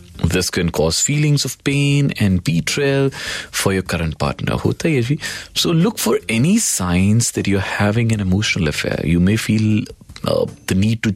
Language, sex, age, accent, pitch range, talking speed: Hindi, male, 40-59, native, 85-130 Hz, 185 wpm